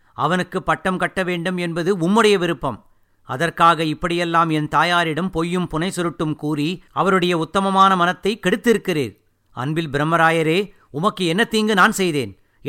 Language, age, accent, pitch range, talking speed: Tamil, 50-69, native, 125-180 Hz, 115 wpm